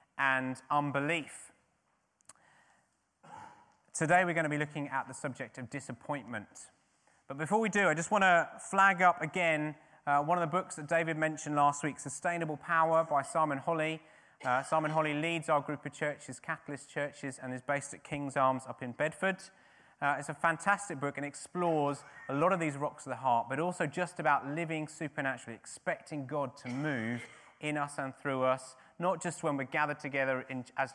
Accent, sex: British, male